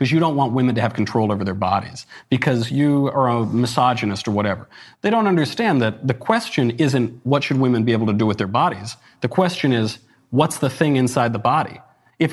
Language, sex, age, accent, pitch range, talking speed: English, male, 40-59, American, 110-150 Hz, 220 wpm